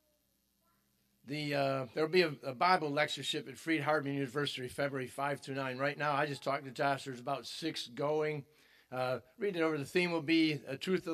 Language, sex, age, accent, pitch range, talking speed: English, male, 50-69, American, 130-155 Hz, 210 wpm